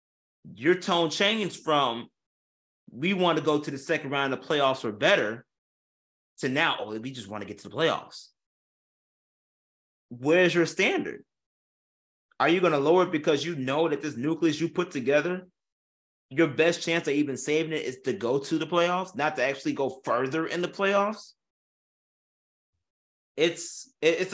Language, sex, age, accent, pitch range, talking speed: English, male, 30-49, American, 120-195 Hz, 170 wpm